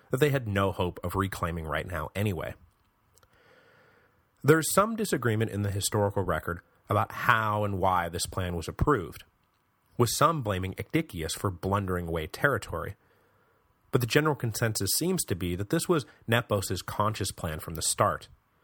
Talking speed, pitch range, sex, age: 160 wpm, 90-120 Hz, male, 30-49